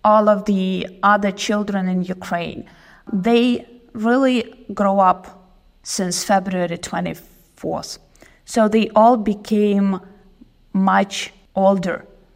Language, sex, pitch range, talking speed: English, female, 195-235 Hz, 95 wpm